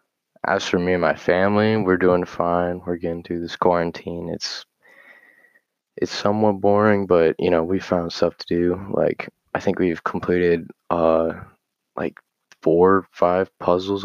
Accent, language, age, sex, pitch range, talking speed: American, English, 20-39, male, 85-95 Hz, 160 wpm